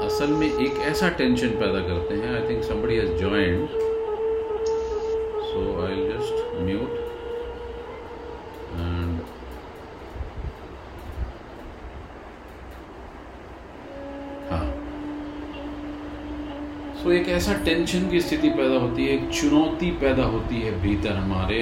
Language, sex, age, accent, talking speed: Hindi, male, 40-59, native, 65 wpm